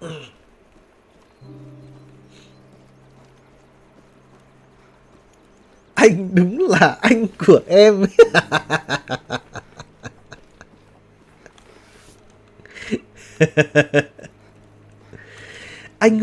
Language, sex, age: Vietnamese, male, 30-49